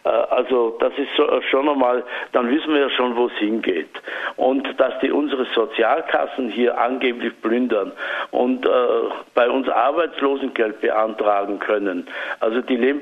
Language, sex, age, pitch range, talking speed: German, male, 60-79, 120-170 Hz, 145 wpm